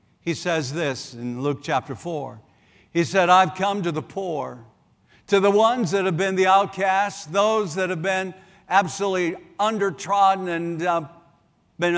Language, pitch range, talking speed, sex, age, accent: English, 150-190 Hz, 155 wpm, male, 60-79, American